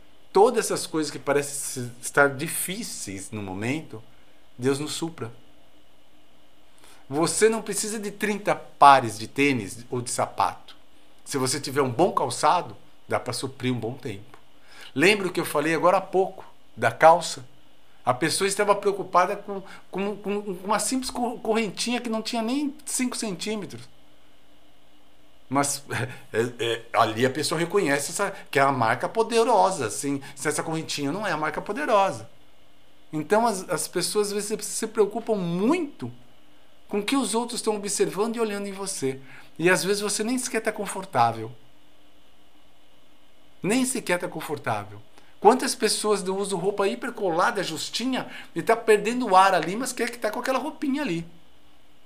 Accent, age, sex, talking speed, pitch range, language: Brazilian, 50-69, male, 155 wpm, 140-215 Hz, Portuguese